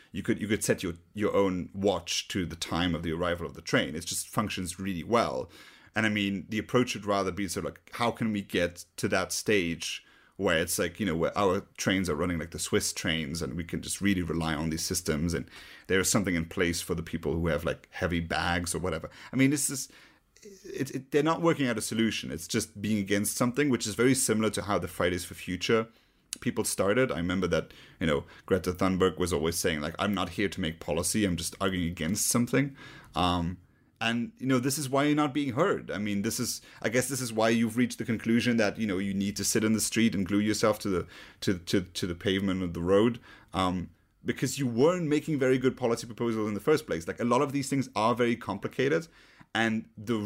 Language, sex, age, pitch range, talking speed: English, male, 30-49, 90-120 Hz, 240 wpm